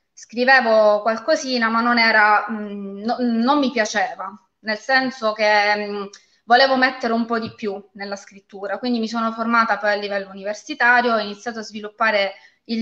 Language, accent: Italian, native